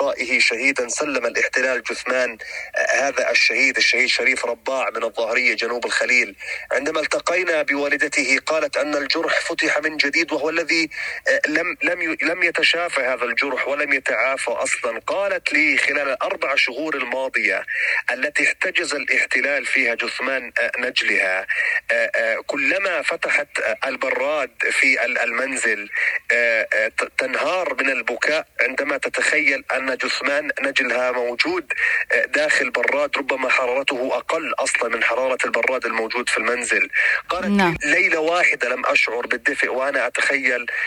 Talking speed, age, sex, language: 115 wpm, 30-49, male, Arabic